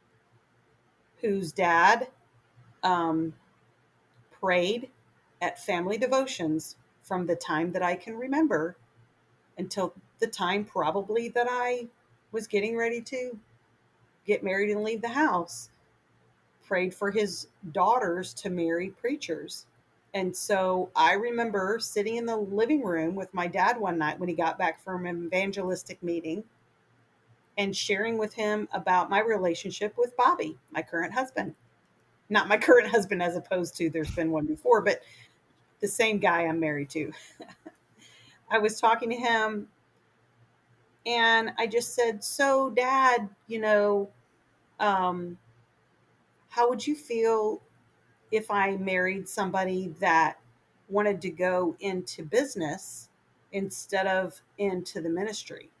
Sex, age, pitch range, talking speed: female, 40-59, 175-225 Hz, 130 wpm